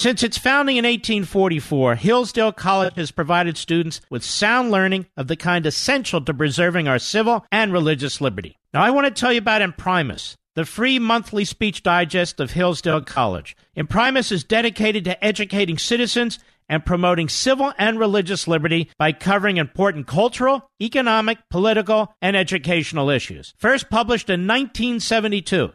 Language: English